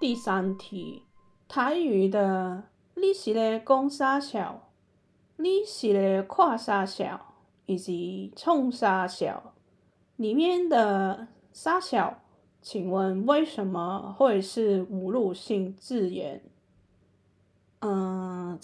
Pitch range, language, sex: 190-245 Hz, Chinese, female